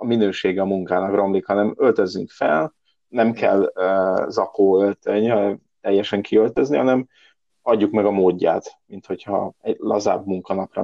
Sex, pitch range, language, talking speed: male, 95-110 Hz, Hungarian, 125 wpm